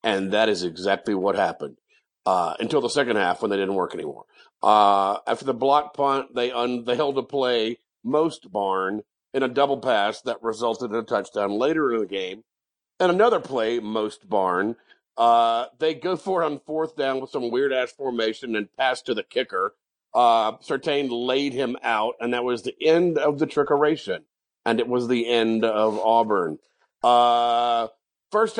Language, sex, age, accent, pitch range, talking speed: English, male, 50-69, American, 110-140 Hz, 180 wpm